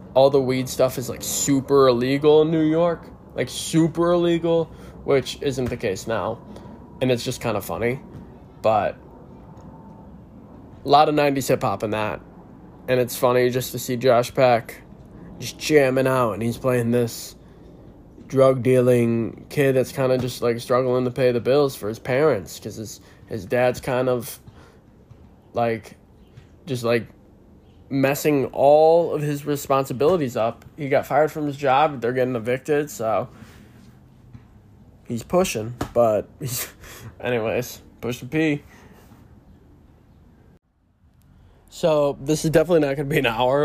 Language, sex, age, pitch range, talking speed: English, male, 20-39, 120-145 Hz, 145 wpm